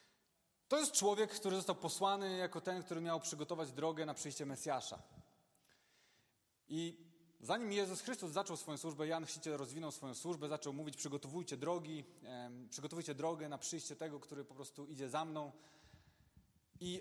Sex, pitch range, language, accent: male, 145-180 Hz, Polish, native